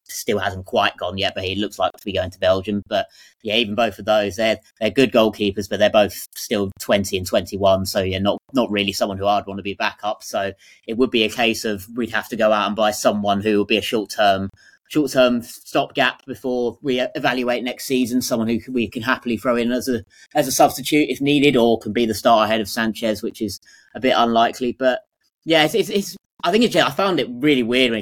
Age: 20-39